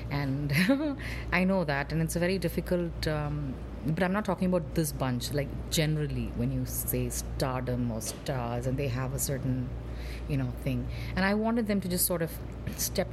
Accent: native